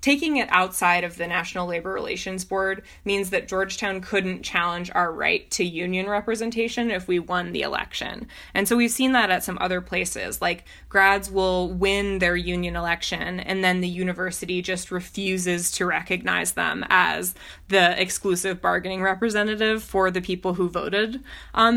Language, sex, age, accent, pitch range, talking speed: English, female, 20-39, American, 175-200 Hz, 165 wpm